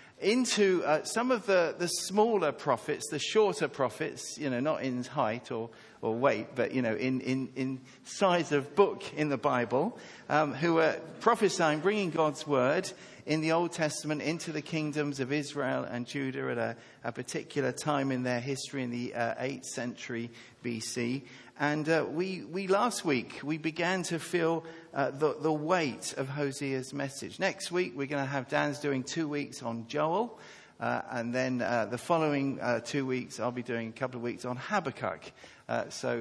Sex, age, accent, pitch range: male, 50-69, British, 125-165 Hz